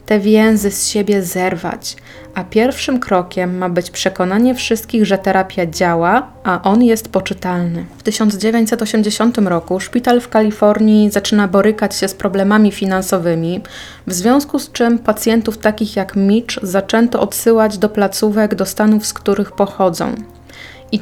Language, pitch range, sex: Polish, 190-220 Hz, female